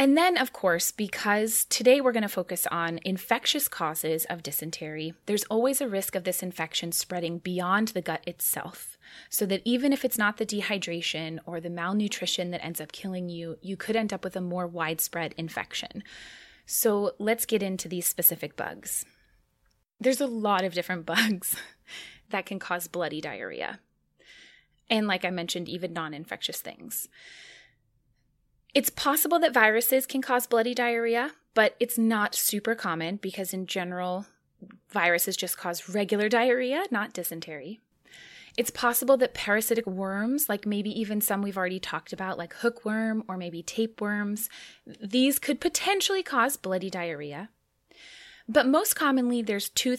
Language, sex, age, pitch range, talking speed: English, female, 20-39, 175-235 Hz, 155 wpm